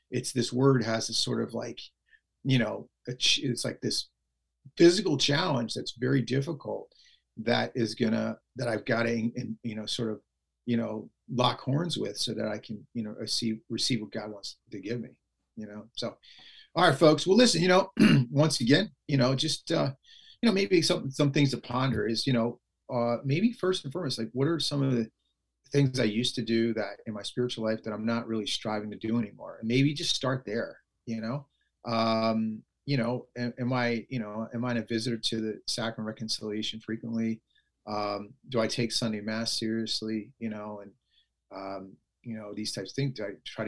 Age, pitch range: 40-59, 110-135 Hz